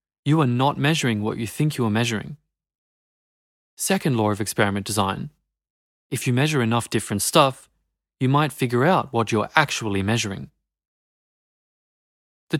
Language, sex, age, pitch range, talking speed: English, male, 20-39, 105-145 Hz, 150 wpm